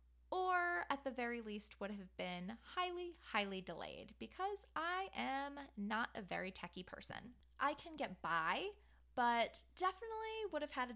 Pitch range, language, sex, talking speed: 205-290 Hz, English, female, 160 wpm